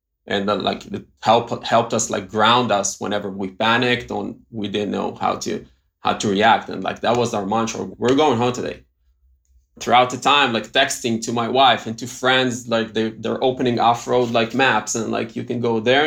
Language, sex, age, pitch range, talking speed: English, male, 20-39, 105-125 Hz, 215 wpm